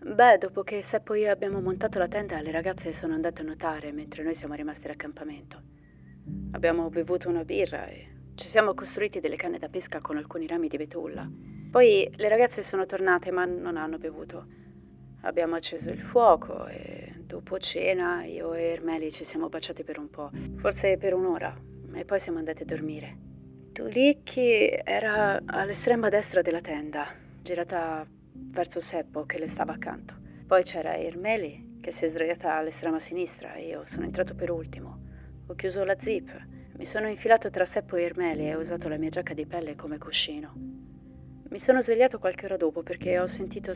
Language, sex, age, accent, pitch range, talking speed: Italian, female, 30-49, native, 150-190 Hz, 175 wpm